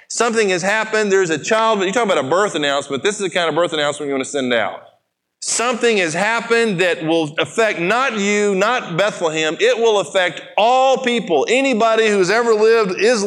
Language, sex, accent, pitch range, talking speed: English, male, American, 160-210 Hz, 200 wpm